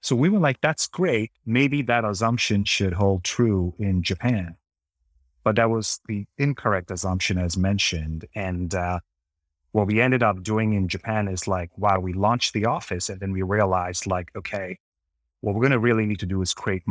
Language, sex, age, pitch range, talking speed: English, male, 30-49, 90-110 Hz, 195 wpm